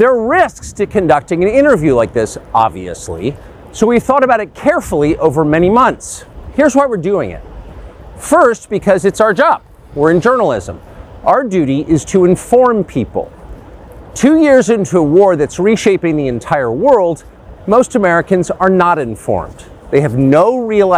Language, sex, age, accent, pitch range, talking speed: English, male, 40-59, American, 145-225 Hz, 165 wpm